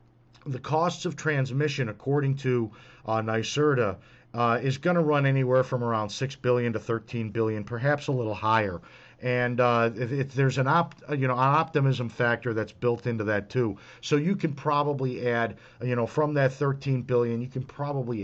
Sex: male